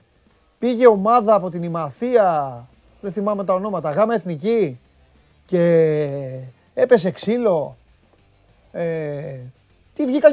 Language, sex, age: Greek, male, 30-49